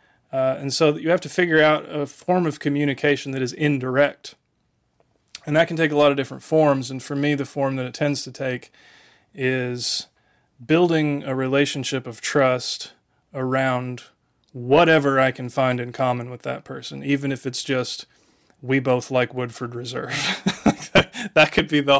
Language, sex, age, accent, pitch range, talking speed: English, male, 30-49, American, 125-140 Hz, 170 wpm